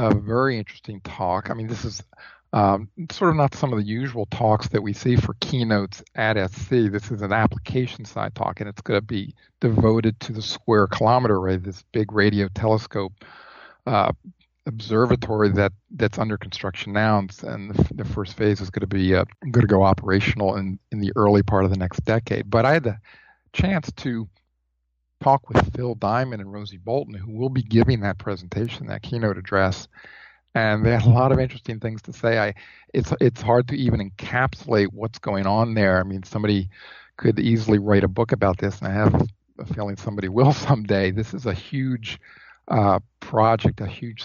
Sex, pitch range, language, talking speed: male, 100-120 Hz, English, 195 wpm